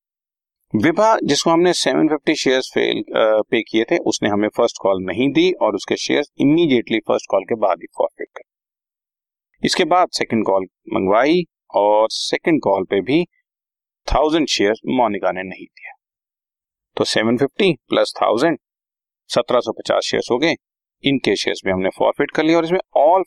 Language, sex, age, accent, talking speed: Hindi, male, 40-59, native, 155 wpm